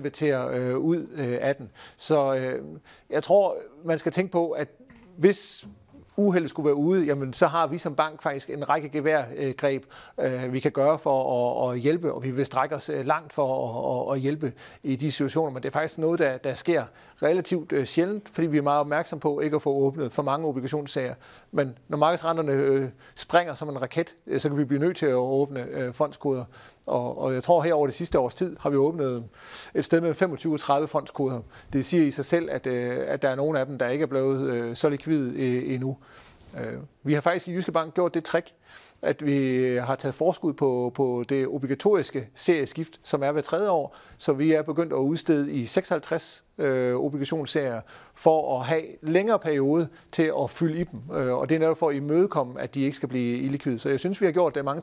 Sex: male